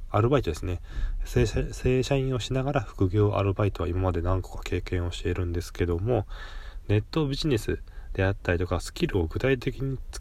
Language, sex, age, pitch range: Japanese, male, 20-39, 80-110 Hz